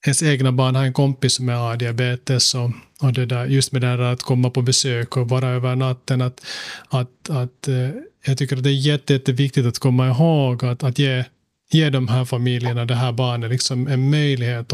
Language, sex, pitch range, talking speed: Swedish, male, 125-140 Hz, 210 wpm